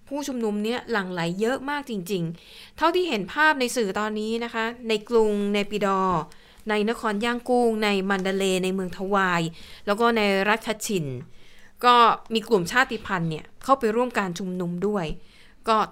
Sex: female